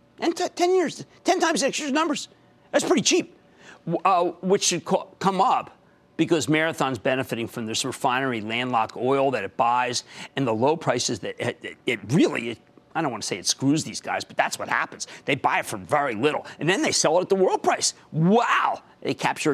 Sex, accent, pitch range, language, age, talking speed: male, American, 140-215 Hz, English, 50-69, 215 wpm